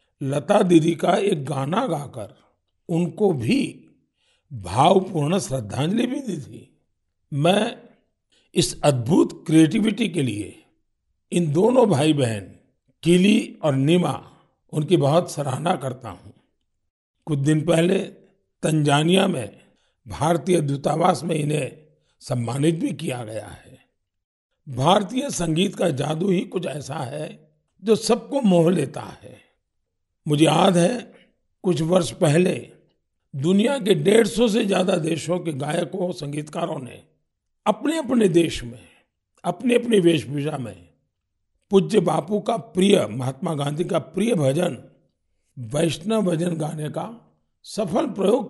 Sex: male